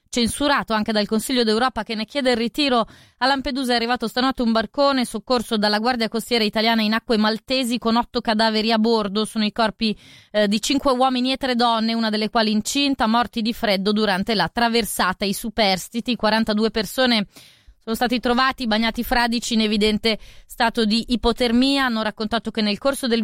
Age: 20-39